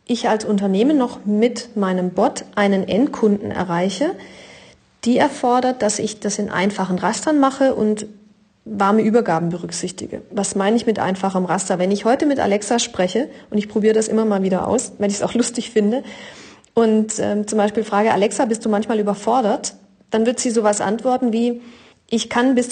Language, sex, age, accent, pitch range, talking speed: German, female, 40-59, German, 205-245 Hz, 180 wpm